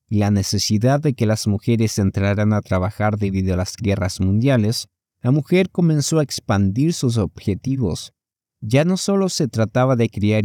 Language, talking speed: Spanish, 165 wpm